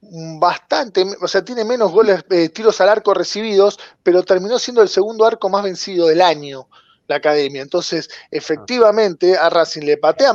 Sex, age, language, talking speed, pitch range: male, 20-39, Spanish, 170 wpm, 165-215 Hz